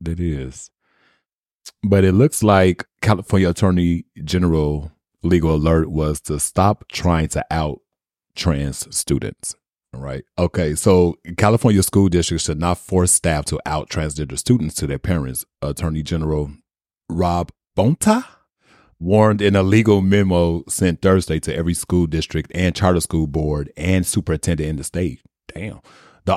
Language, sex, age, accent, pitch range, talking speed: English, male, 30-49, American, 85-105 Hz, 140 wpm